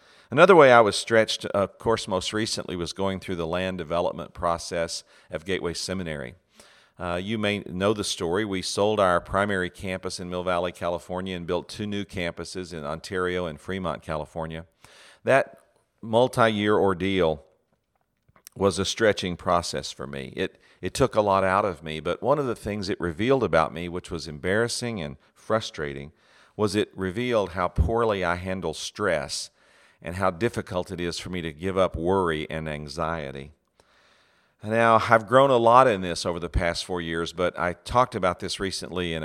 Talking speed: 175 wpm